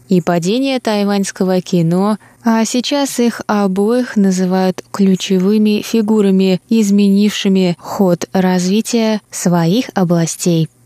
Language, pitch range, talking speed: Russian, 180-220 Hz, 90 wpm